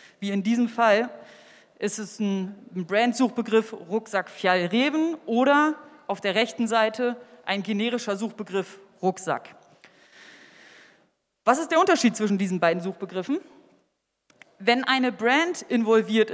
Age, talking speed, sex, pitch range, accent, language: 30-49, 110 wpm, female, 200-255 Hz, German, German